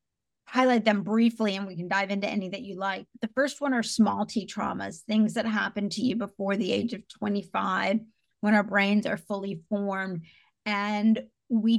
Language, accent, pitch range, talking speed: English, American, 200-230 Hz, 190 wpm